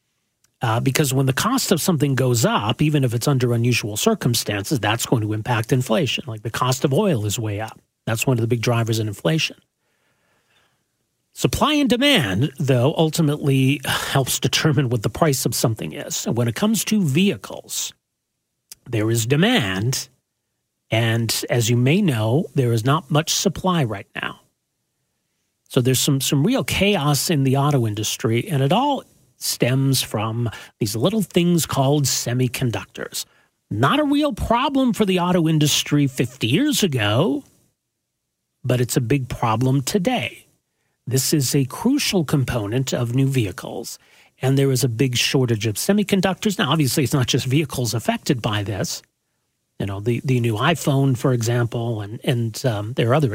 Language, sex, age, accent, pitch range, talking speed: English, male, 40-59, American, 120-155 Hz, 165 wpm